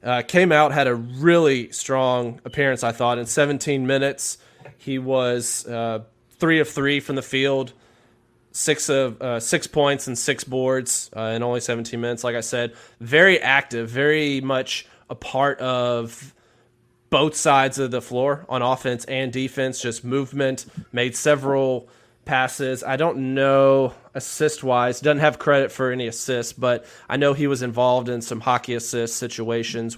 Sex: male